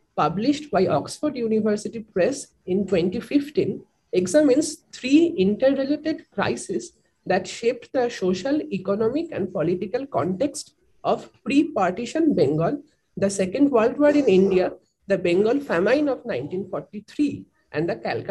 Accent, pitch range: native, 190-285 Hz